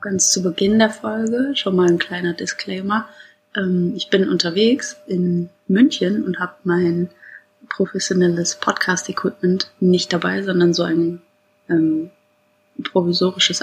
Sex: female